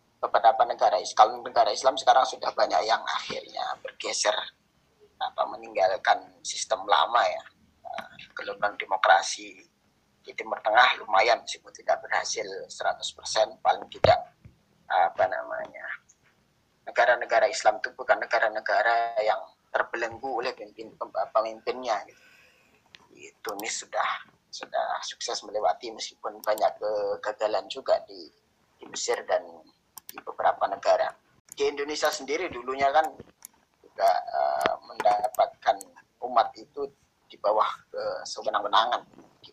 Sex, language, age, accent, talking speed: male, Indonesian, 20-39, native, 110 wpm